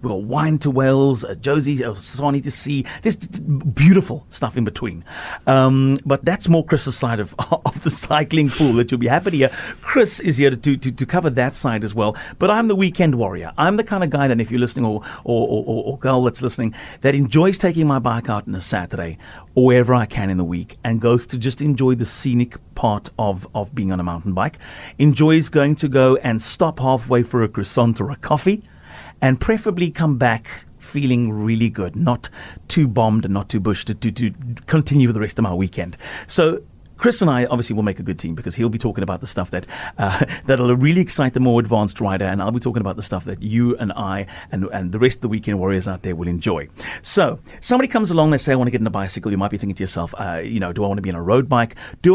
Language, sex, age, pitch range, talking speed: English, male, 40-59, 105-145 Hz, 245 wpm